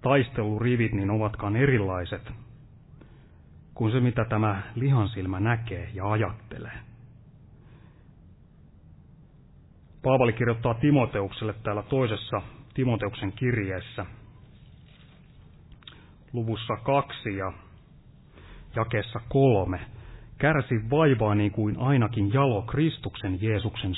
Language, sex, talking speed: Finnish, male, 80 wpm